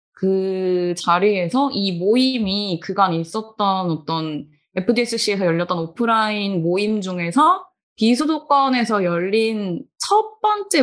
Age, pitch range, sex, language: 20-39, 180-245 Hz, female, Korean